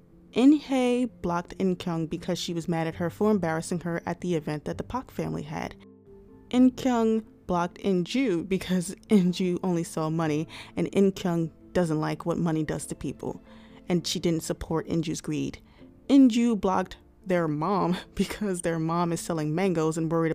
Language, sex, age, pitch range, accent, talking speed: English, female, 20-39, 160-190 Hz, American, 160 wpm